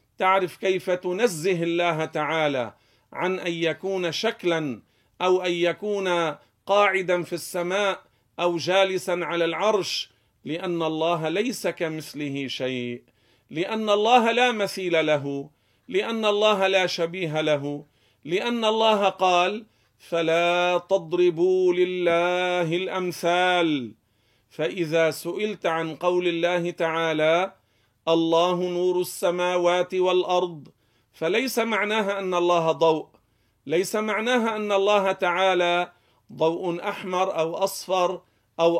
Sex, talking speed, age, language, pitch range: male, 100 wpm, 50-69, Arabic, 160-190 Hz